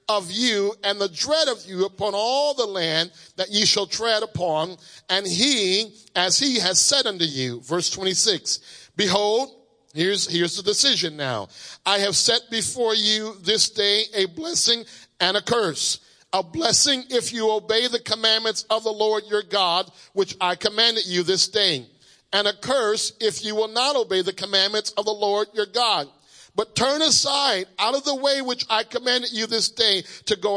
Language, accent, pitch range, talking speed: English, American, 185-230 Hz, 180 wpm